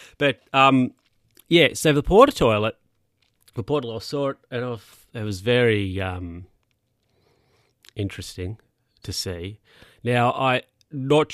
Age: 30-49